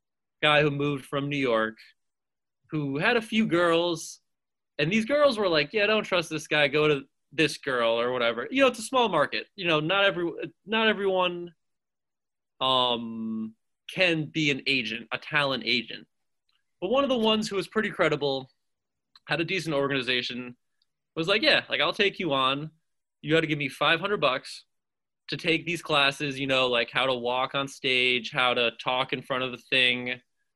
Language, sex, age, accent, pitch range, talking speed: English, male, 20-39, American, 125-170 Hz, 185 wpm